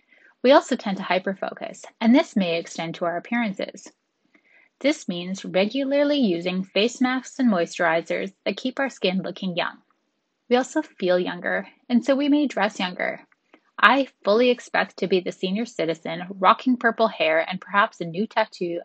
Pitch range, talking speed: 180-250 Hz, 165 wpm